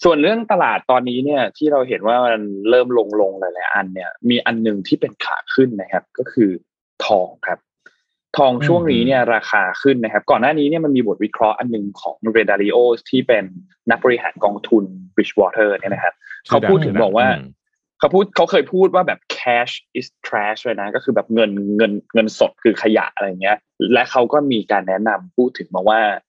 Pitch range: 110-145 Hz